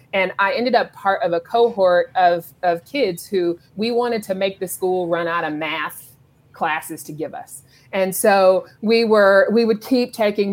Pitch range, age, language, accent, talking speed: 165-195 Hz, 30-49, English, American, 195 wpm